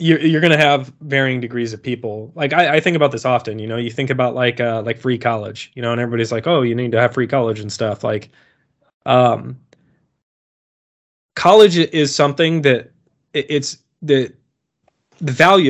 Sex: male